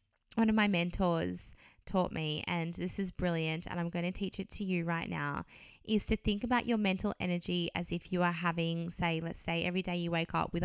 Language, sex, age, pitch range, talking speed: English, female, 20-39, 170-215 Hz, 225 wpm